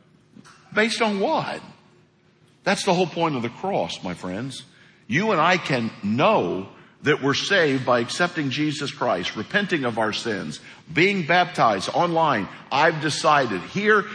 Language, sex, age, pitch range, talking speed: English, male, 50-69, 130-175 Hz, 145 wpm